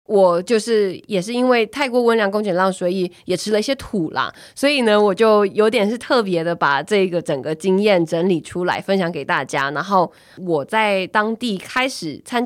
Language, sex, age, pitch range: Chinese, female, 20-39, 170-210 Hz